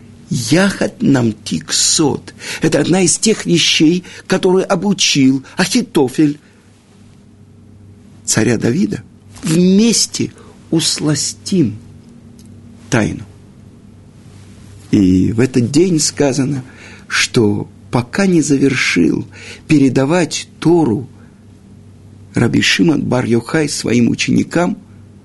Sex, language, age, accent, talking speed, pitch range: male, Russian, 50-69, native, 70 wpm, 105-165 Hz